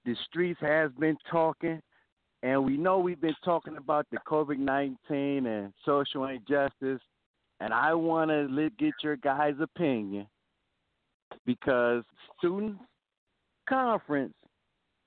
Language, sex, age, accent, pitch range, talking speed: English, male, 50-69, American, 150-210 Hz, 115 wpm